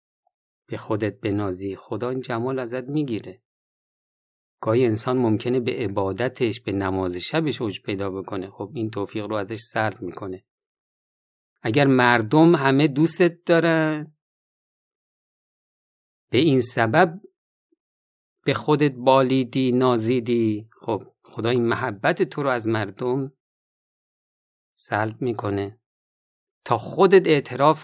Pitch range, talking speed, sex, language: 110-140 Hz, 110 wpm, male, Persian